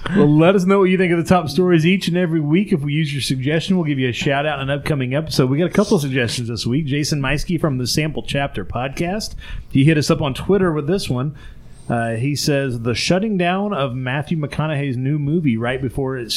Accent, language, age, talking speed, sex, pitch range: American, English, 30-49, 240 wpm, male, 120-165 Hz